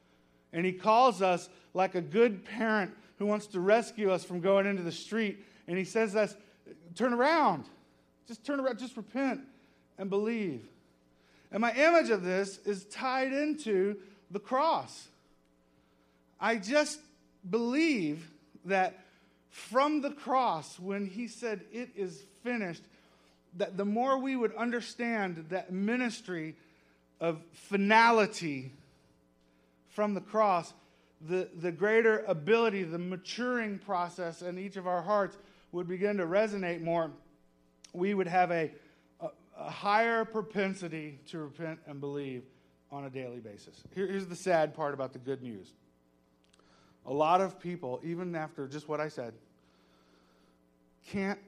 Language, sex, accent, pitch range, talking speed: English, male, American, 135-210 Hz, 140 wpm